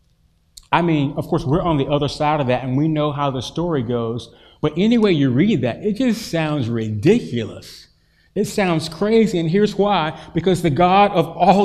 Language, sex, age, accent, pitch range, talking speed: English, male, 30-49, American, 130-170 Hz, 195 wpm